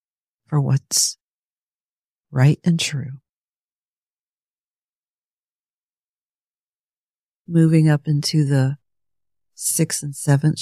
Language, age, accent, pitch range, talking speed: English, 50-69, American, 95-160 Hz, 70 wpm